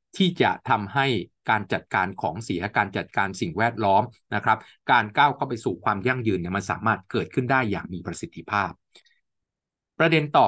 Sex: male